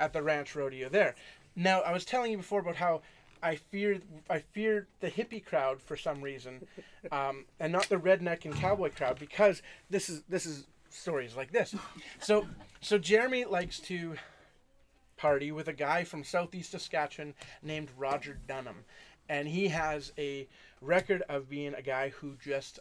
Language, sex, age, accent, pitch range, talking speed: English, male, 30-49, American, 150-215 Hz, 170 wpm